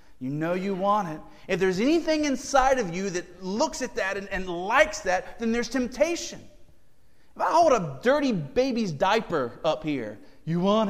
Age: 40-59